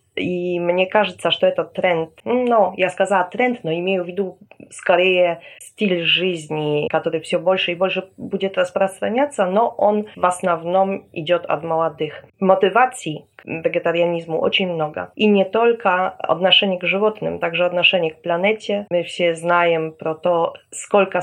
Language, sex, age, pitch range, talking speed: Russian, female, 20-39, 165-195 Hz, 145 wpm